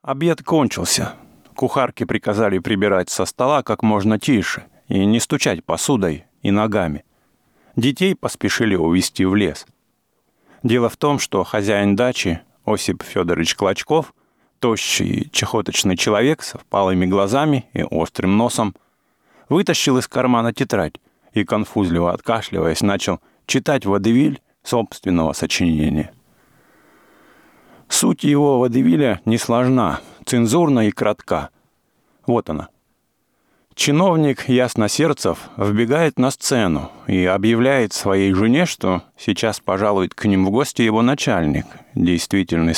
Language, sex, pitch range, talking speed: English, male, 95-125 Hz, 115 wpm